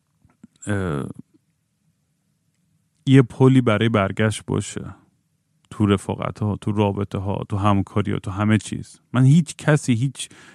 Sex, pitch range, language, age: male, 105-135 Hz, Persian, 30-49